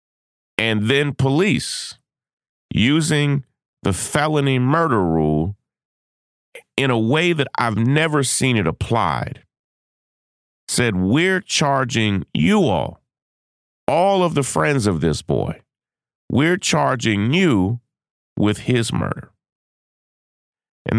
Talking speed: 105 wpm